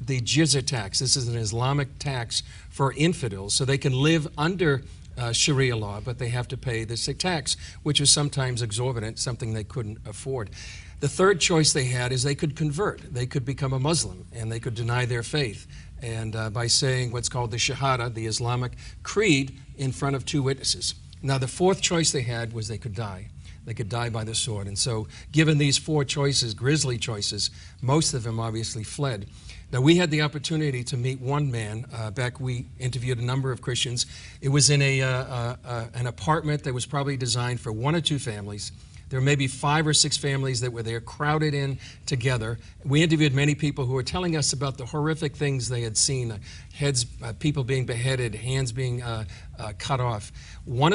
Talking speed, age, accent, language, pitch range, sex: 205 wpm, 50-69, American, English, 115-140 Hz, male